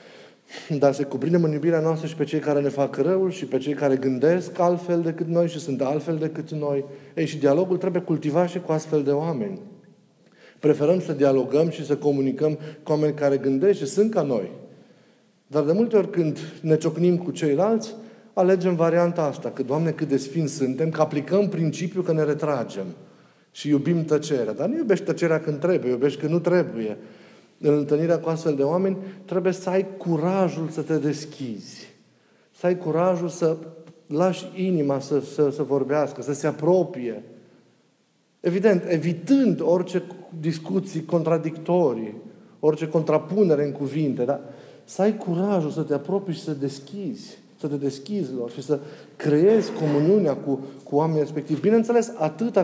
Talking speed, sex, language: 165 wpm, male, Romanian